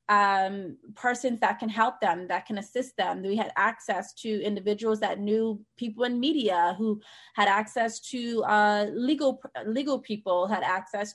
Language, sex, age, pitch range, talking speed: English, female, 20-39, 195-240 Hz, 160 wpm